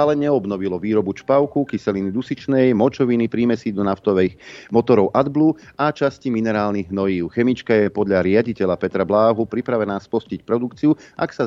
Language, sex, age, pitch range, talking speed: Slovak, male, 40-59, 100-135 Hz, 140 wpm